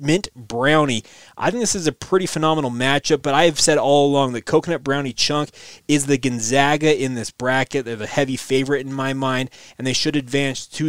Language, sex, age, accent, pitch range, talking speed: English, male, 30-49, American, 130-160 Hz, 210 wpm